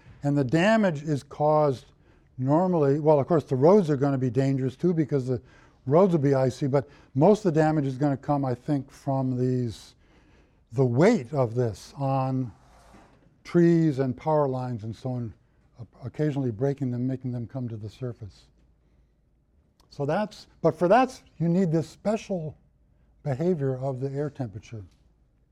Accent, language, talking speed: American, English, 165 wpm